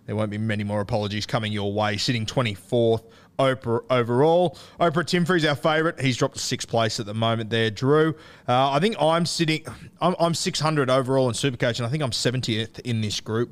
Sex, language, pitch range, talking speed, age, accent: male, English, 110-145 Hz, 210 wpm, 20-39, Australian